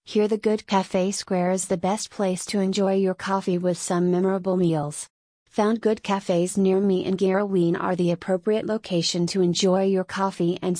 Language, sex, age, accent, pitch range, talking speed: English, female, 30-49, American, 180-200 Hz, 185 wpm